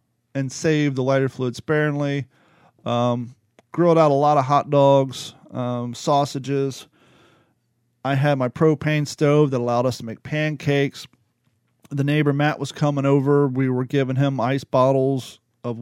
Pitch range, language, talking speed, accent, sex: 125-150 Hz, English, 150 wpm, American, male